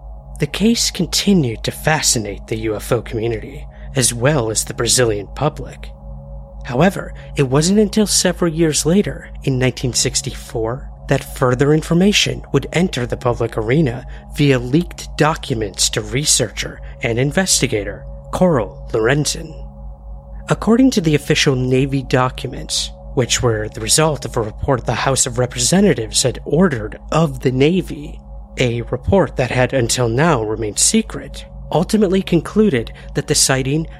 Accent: American